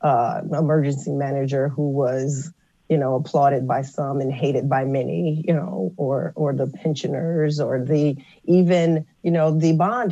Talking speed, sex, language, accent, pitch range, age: 160 wpm, female, English, American, 145-175 Hz, 40-59